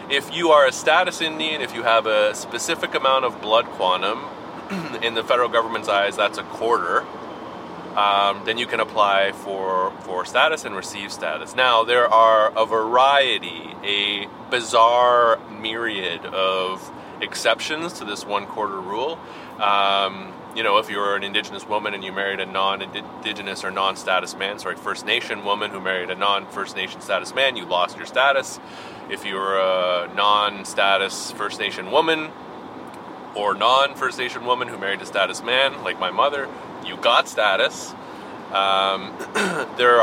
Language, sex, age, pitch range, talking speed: English, male, 30-49, 95-120 Hz, 155 wpm